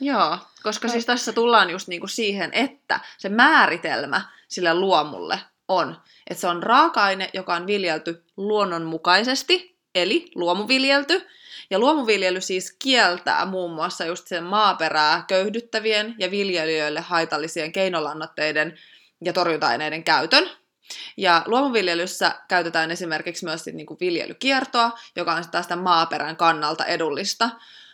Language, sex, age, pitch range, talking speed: Finnish, female, 20-39, 170-220 Hz, 115 wpm